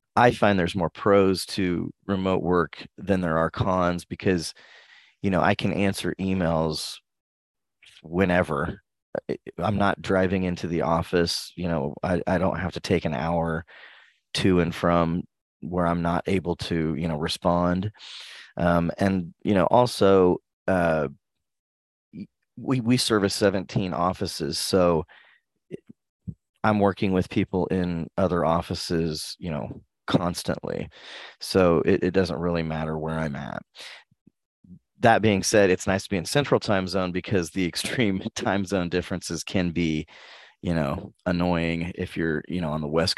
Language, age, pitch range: English, 30-49, 80-95 Hz